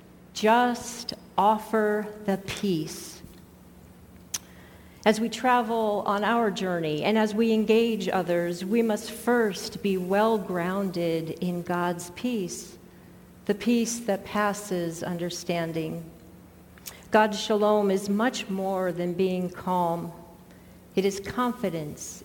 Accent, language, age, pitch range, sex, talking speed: American, English, 50-69, 180-230 Hz, female, 110 wpm